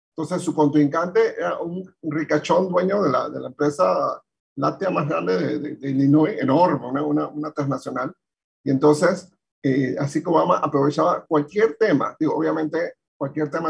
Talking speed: 165 wpm